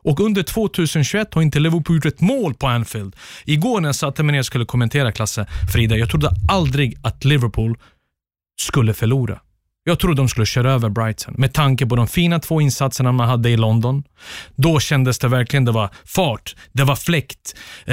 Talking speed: 185 wpm